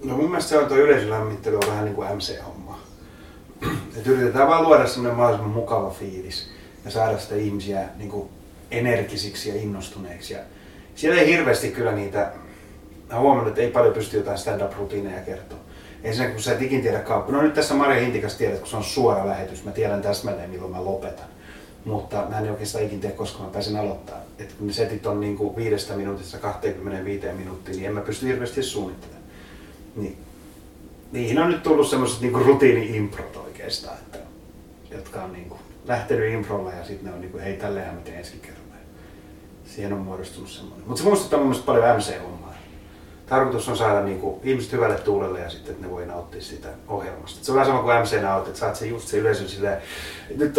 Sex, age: male, 30-49